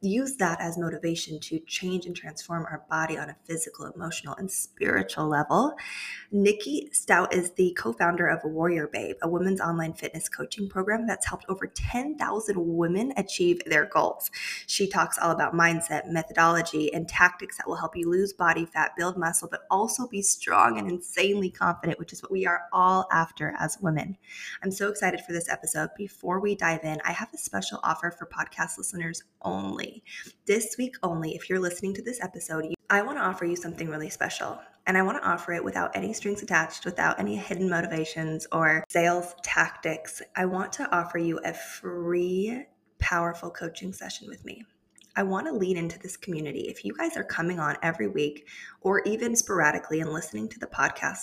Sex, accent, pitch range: female, American, 165-200 Hz